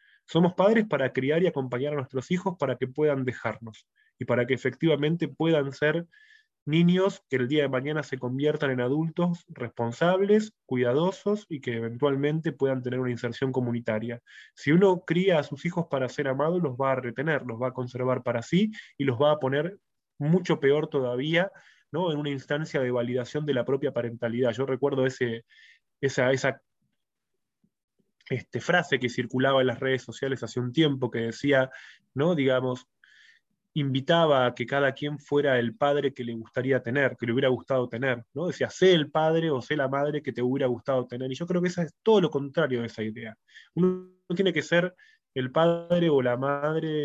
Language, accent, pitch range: Spanish, Argentinian, 125-160 Hz